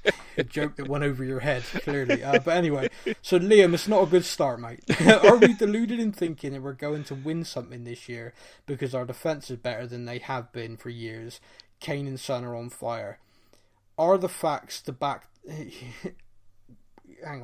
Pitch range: 125-165 Hz